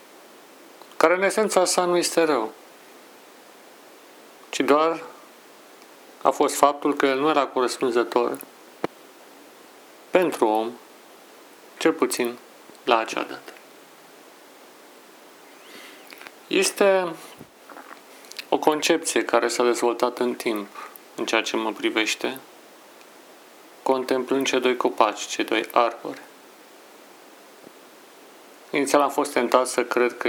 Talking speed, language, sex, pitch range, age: 100 wpm, Romanian, male, 120-155 Hz, 40-59